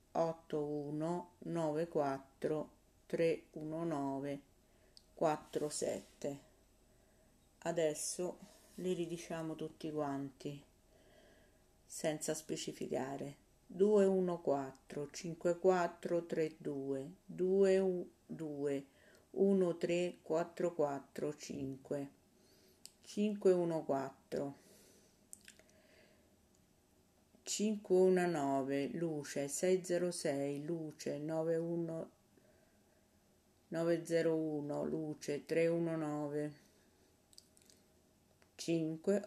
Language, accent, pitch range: Italian, native, 145-175 Hz